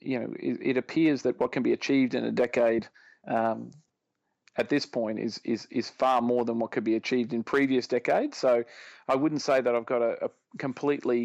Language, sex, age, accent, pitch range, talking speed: English, male, 40-59, Australian, 115-130 Hz, 210 wpm